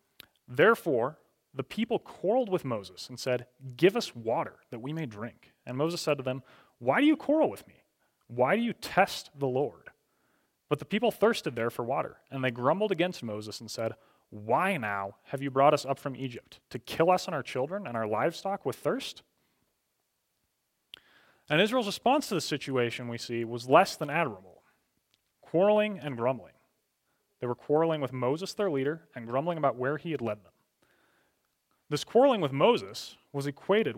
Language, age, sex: English, 30-49, male